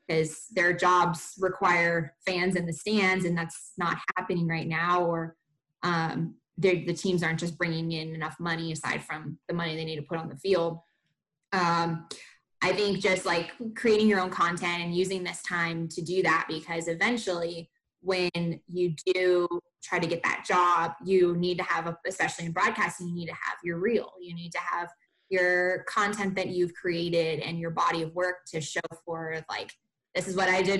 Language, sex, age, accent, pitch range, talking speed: English, female, 20-39, American, 170-185 Hz, 190 wpm